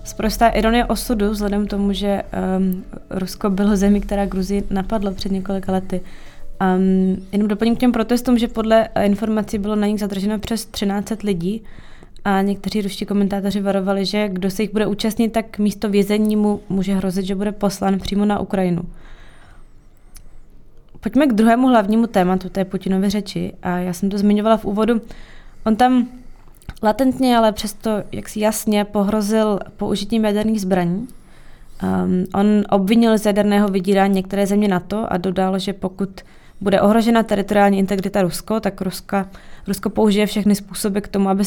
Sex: female